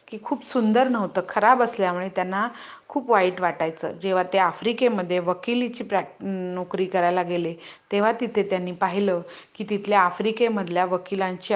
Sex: female